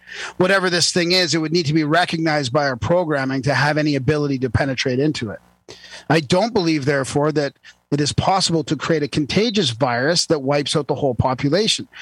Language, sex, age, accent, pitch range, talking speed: English, male, 40-59, American, 135-170 Hz, 200 wpm